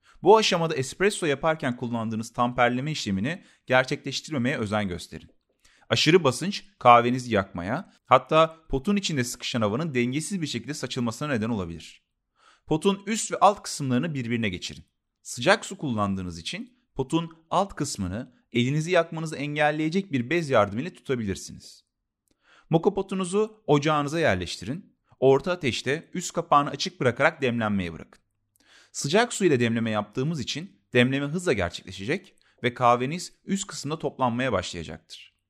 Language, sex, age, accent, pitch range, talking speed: Turkish, male, 30-49, native, 115-165 Hz, 125 wpm